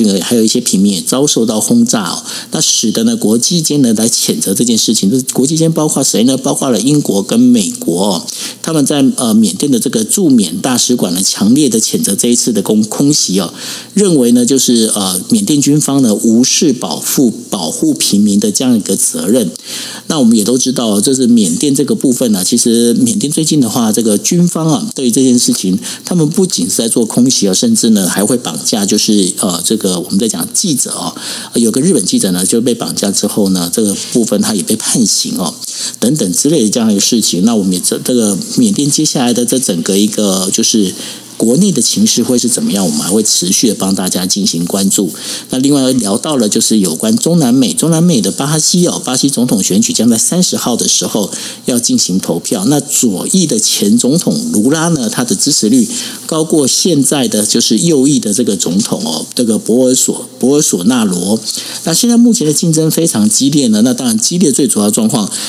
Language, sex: Chinese, male